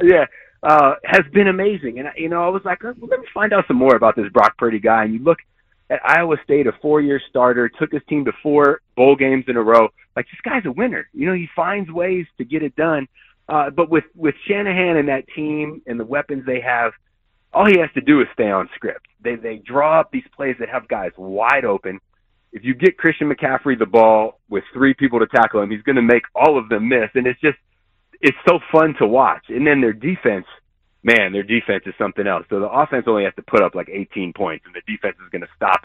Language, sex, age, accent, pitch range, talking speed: English, male, 30-49, American, 110-150 Hz, 245 wpm